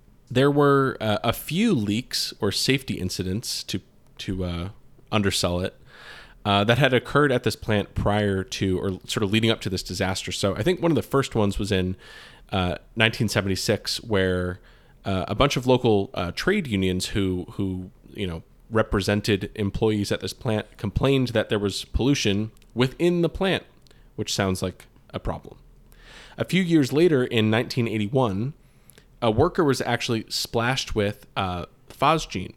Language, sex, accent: English, male, American